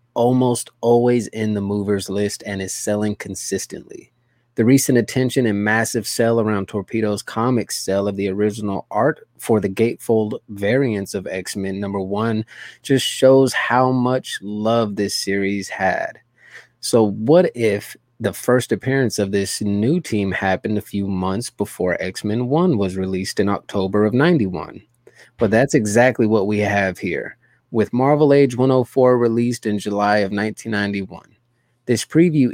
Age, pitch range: 20-39, 100-120 Hz